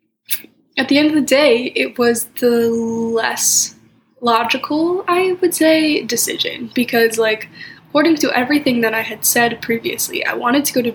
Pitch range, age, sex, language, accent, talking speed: 230-275 Hz, 10-29, female, English, American, 165 wpm